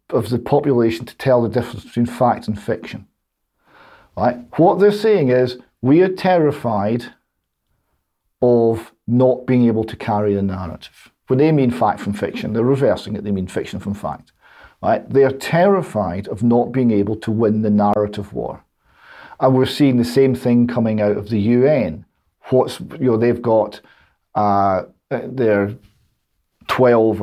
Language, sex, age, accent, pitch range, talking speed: English, male, 40-59, British, 110-135 Hz, 160 wpm